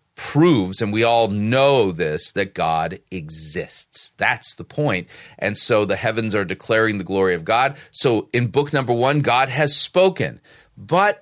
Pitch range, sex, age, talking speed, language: 105-135 Hz, male, 40-59, 165 wpm, English